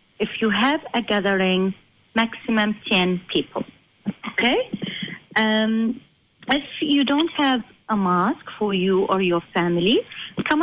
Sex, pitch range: female, 200-275 Hz